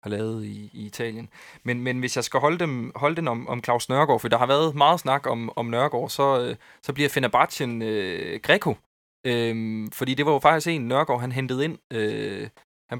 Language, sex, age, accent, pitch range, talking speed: Danish, male, 20-39, native, 110-125 Hz, 210 wpm